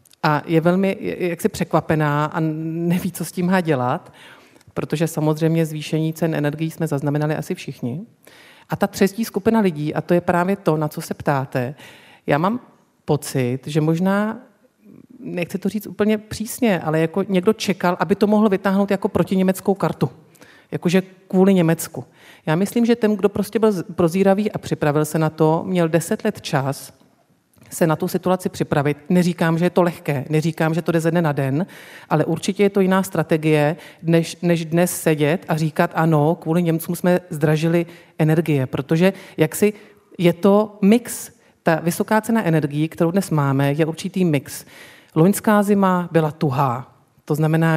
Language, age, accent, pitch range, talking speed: Czech, 40-59, native, 155-195 Hz, 170 wpm